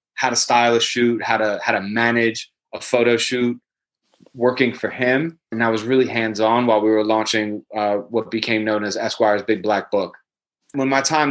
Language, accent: English, American